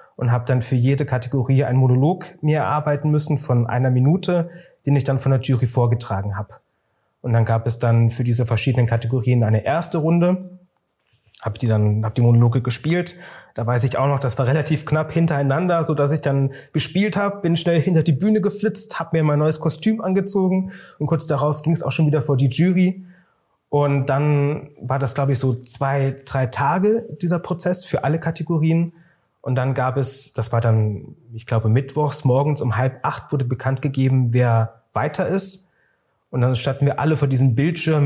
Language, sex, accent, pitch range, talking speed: German, male, German, 125-160 Hz, 195 wpm